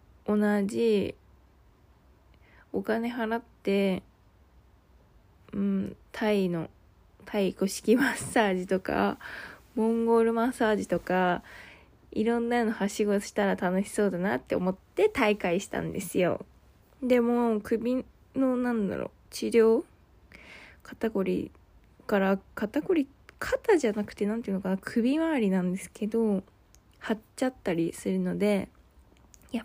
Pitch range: 180-230 Hz